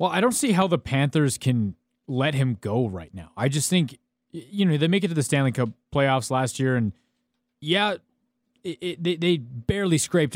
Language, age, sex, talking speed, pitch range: English, 20-39, male, 210 wpm, 125-165 Hz